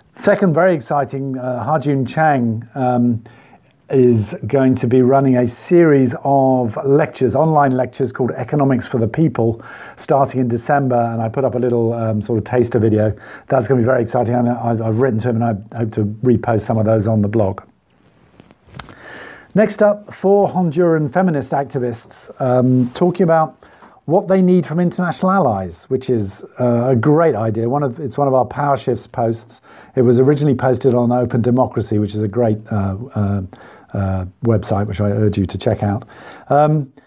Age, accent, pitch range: 50-69, British, 115-145 Hz